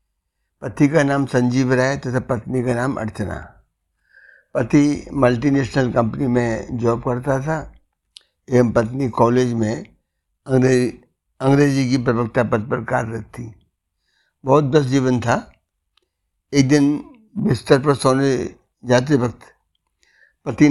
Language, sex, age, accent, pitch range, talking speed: Hindi, male, 60-79, native, 115-140 Hz, 120 wpm